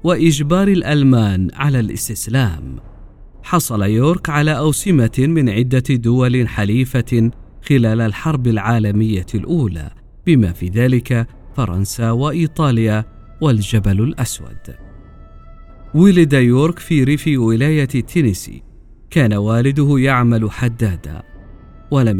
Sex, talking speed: male, 90 wpm